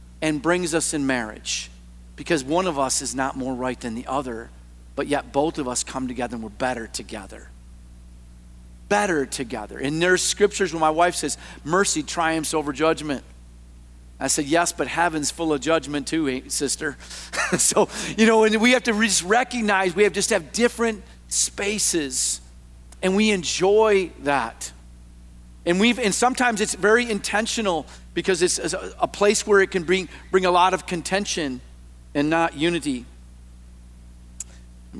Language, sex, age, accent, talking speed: English, male, 40-59, American, 165 wpm